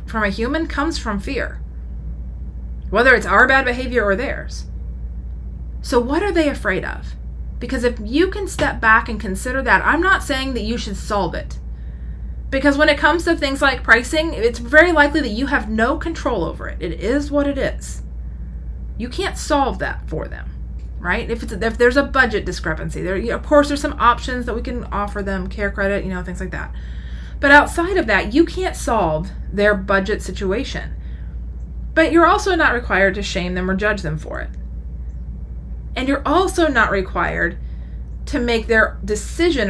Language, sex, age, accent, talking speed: English, female, 30-49, American, 185 wpm